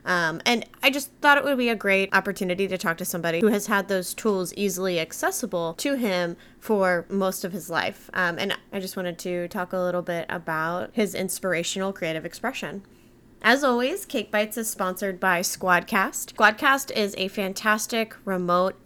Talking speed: 180 wpm